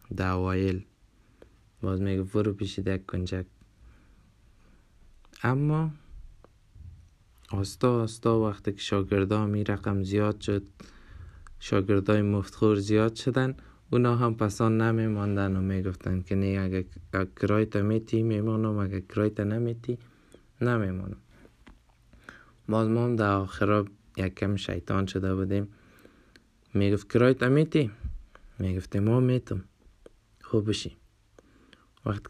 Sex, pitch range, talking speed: male, 95-115 Hz, 100 wpm